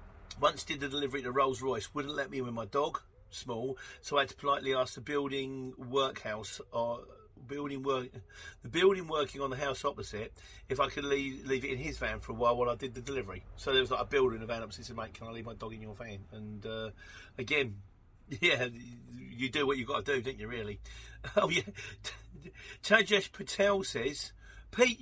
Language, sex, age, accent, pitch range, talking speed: English, male, 40-59, British, 105-150 Hz, 220 wpm